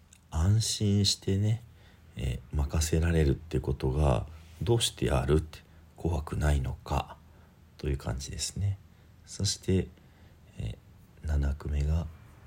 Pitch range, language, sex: 70-90 Hz, Japanese, male